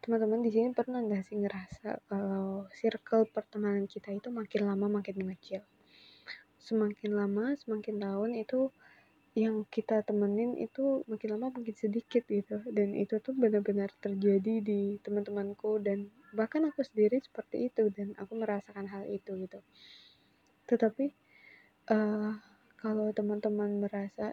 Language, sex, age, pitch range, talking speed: English, female, 20-39, 200-225 Hz, 130 wpm